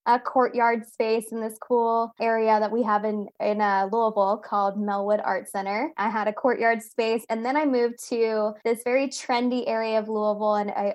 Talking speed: 195 wpm